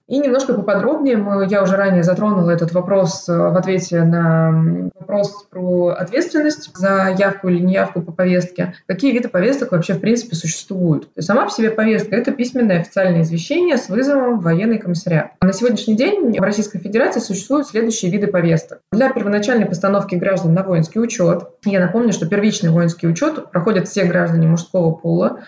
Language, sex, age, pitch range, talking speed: Russian, female, 20-39, 180-225 Hz, 165 wpm